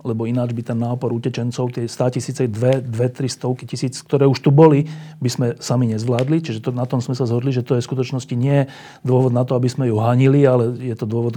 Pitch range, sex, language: 125-155 Hz, male, Slovak